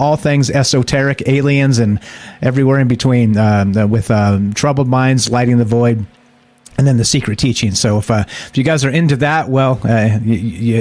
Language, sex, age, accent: English, male, 30-49, American